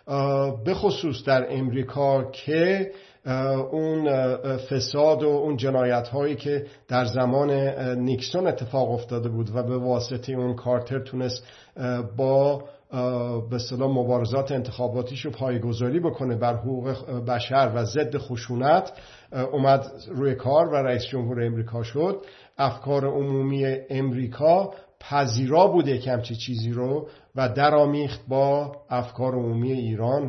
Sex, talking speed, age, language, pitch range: male, 115 wpm, 50-69, Persian, 125-145 Hz